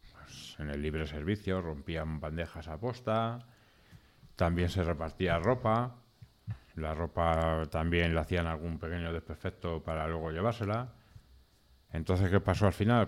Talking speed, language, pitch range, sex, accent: 130 wpm, Spanish, 80-105 Hz, male, Spanish